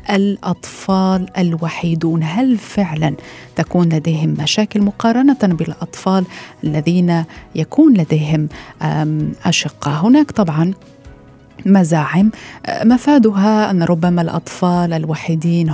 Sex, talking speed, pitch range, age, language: female, 80 wpm, 160-190 Hz, 30-49, Arabic